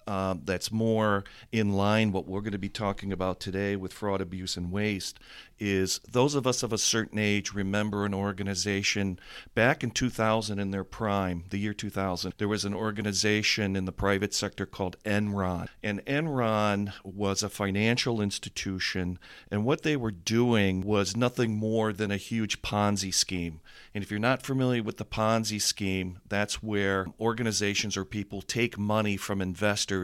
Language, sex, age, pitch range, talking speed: English, male, 40-59, 95-110 Hz, 170 wpm